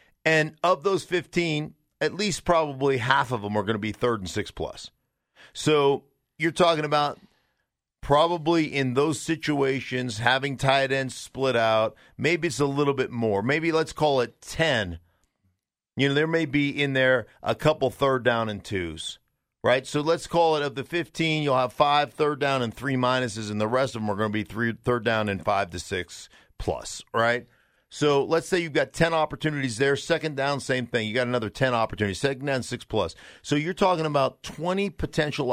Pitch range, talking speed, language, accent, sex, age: 115-155 Hz, 195 wpm, English, American, male, 50-69